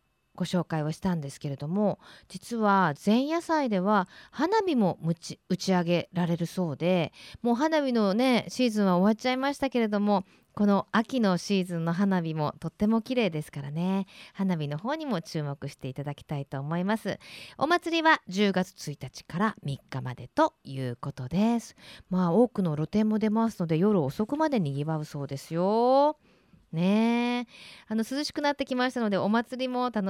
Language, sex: Japanese, female